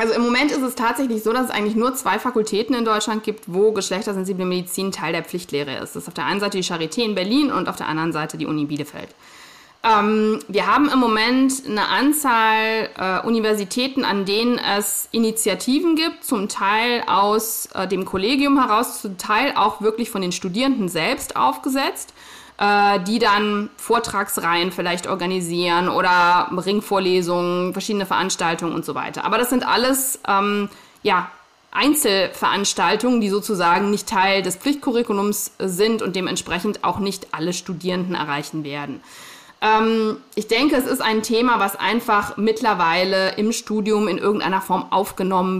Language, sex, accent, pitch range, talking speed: German, female, German, 185-230 Hz, 160 wpm